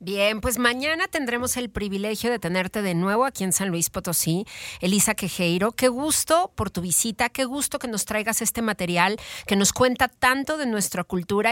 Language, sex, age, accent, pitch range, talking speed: Spanish, female, 40-59, Mexican, 195-250 Hz, 190 wpm